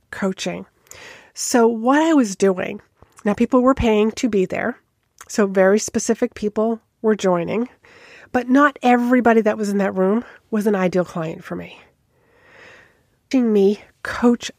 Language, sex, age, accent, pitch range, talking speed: English, female, 40-59, American, 195-250 Hz, 145 wpm